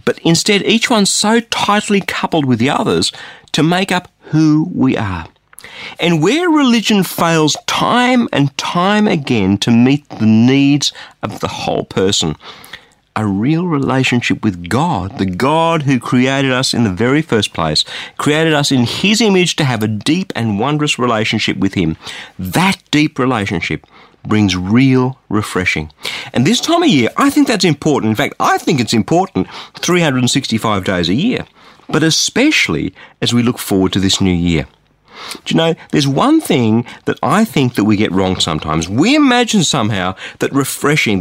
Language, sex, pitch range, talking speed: English, male, 110-180 Hz, 165 wpm